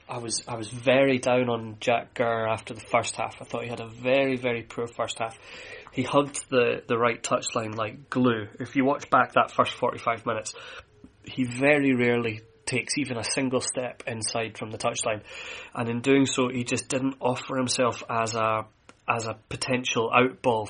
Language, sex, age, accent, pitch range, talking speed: English, male, 30-49, British, 115-130 Hz, 195 wpm